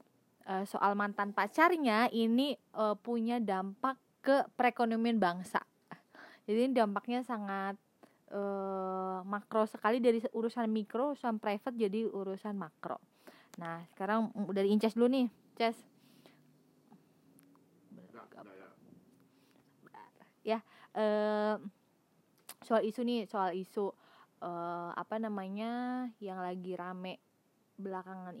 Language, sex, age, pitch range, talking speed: Indonesian, female, 20-39, 190-225 Hz, 95 wpm